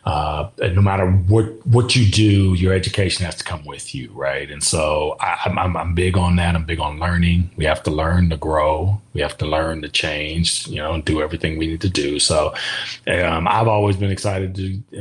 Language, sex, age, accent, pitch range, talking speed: English, male, 30-49, American, 85-95 Hz, 225 wpm